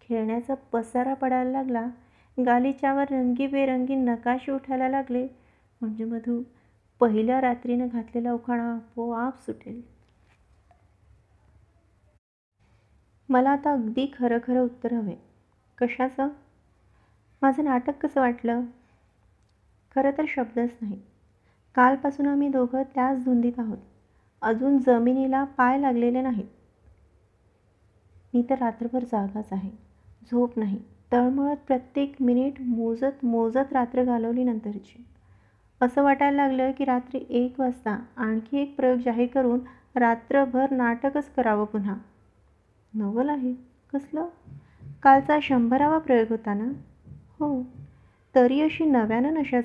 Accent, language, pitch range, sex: native, Marathi, 220-270 Hz, female